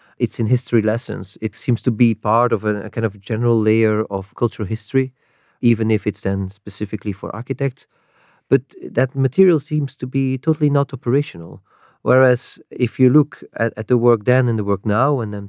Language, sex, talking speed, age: English, male, 190 wpm, 40-59